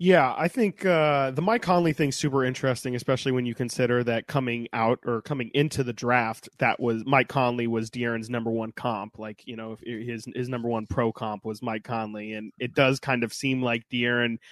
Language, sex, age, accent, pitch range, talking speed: English, male, 20-39, American, 115-135 Hz, 210 wpm